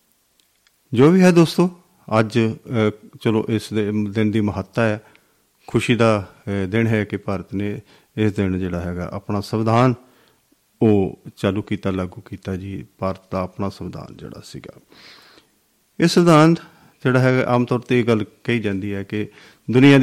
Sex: male